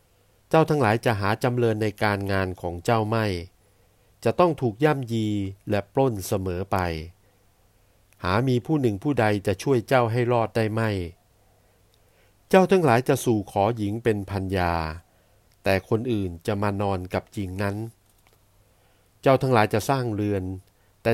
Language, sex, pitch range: Thai, male, 100-120 Hz